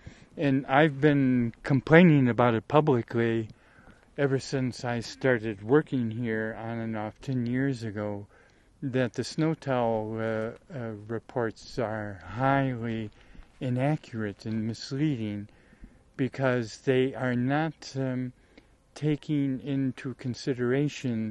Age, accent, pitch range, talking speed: 50-69, American, 110-135 Hz, 110 wpm